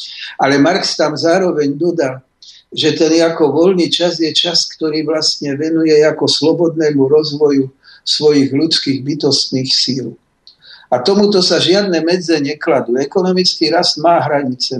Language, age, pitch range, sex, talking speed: Slovak, 50-69, 155-180 Hz, male, 130 wpm